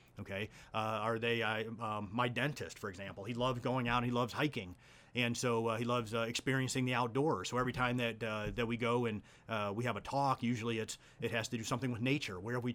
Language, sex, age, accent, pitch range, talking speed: English, male, 30-49, American, 115-130 Hz, 250 wpm